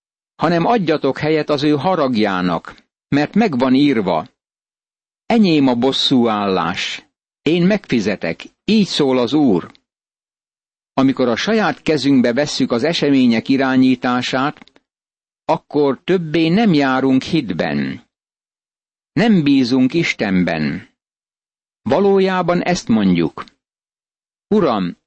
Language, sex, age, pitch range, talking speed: Hungarian, male, 60-79, 125-160 Hz, 95 wpm